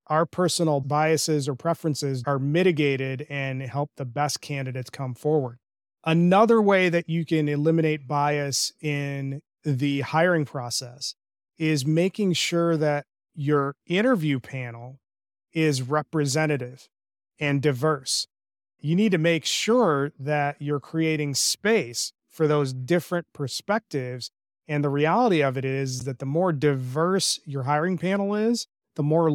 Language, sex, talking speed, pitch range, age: English, male, 135 wpm, 140-165 Hz, 30-49